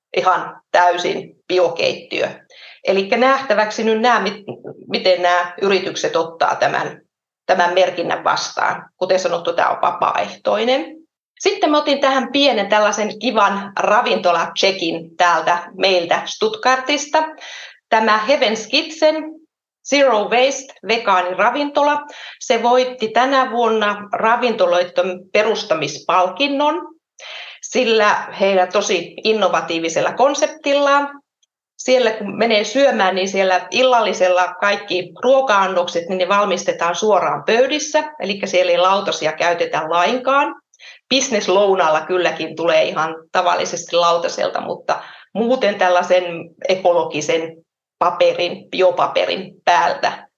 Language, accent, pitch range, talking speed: Finnish, native, 180-260 Hz, 95 wpm